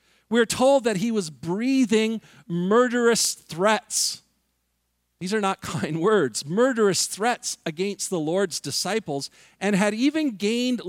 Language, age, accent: English, 50-69, American